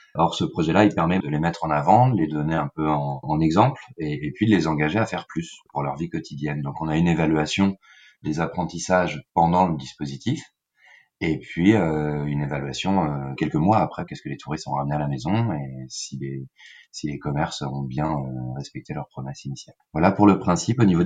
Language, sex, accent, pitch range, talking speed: French, male, French, 75-95 Hz, 220 wpm